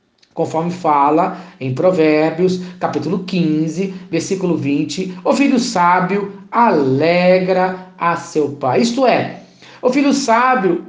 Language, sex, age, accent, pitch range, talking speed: Portuguese, male, 50-69, Brazilian, 155-225 Hz, 110 wpm